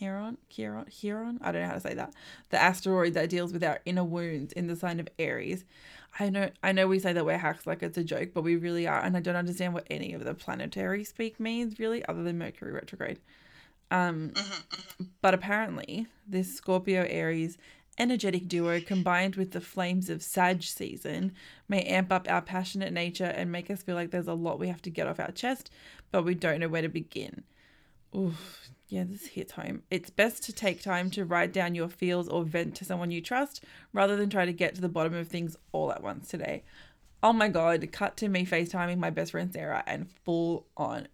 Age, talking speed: 20-39, 210 wpm